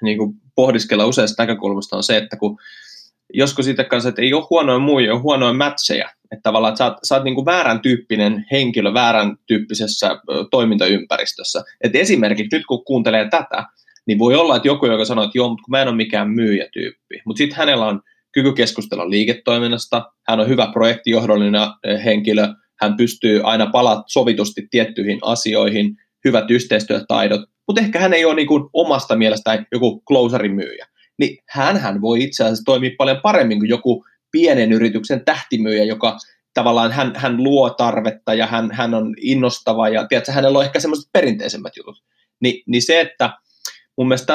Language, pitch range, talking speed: Finnish, 110-135 Hz, 170 wpm